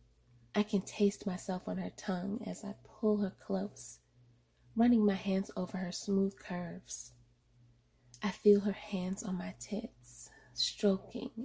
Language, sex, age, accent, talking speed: English, female, 20-39, American, 140 wpm